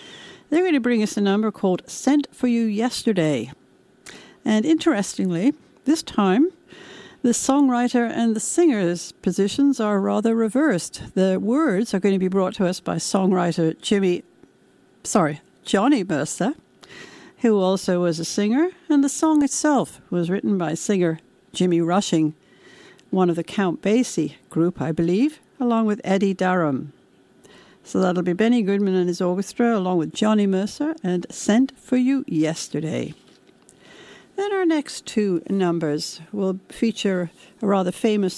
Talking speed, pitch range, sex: 145 wpm, 180-245 Hz, female